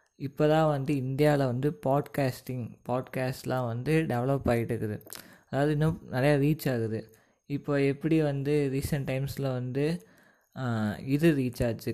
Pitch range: 120-150 Hz